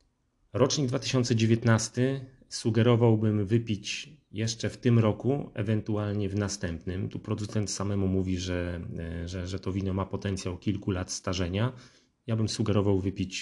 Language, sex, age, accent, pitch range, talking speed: Polish, male, 30-49, native, 95-115 Hz, 130 wpm